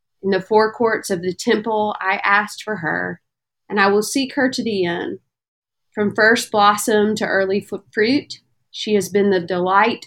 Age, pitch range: 30-49, 185-215 Hz